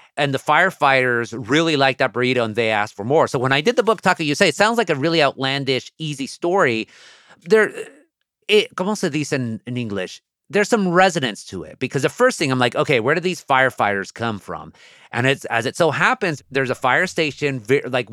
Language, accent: English, American